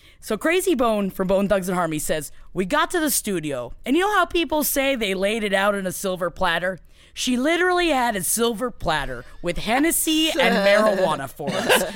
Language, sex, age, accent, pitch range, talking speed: English, female, 20-39, American, 185-265 Hz, 200 wpm